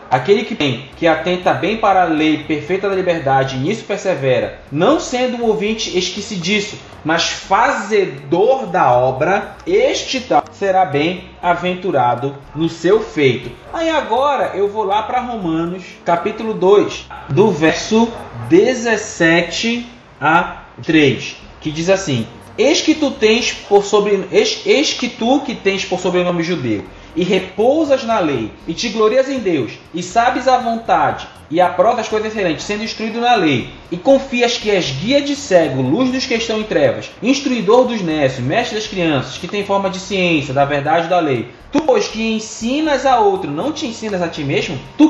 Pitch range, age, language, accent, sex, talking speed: 170-245 Hz, 20-39, Portuguese, Brazilian, male, 170 wpm